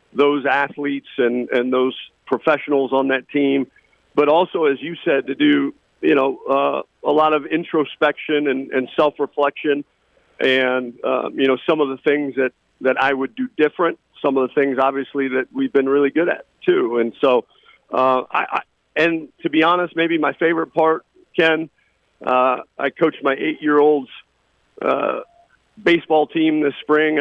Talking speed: 170 wpm